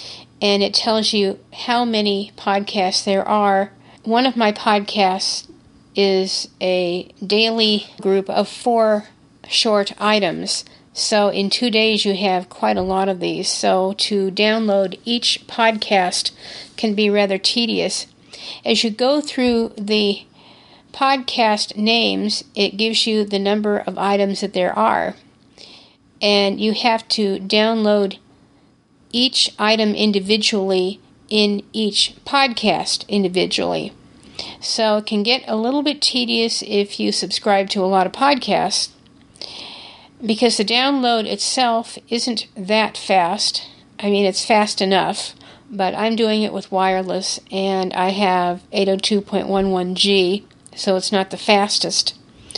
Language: English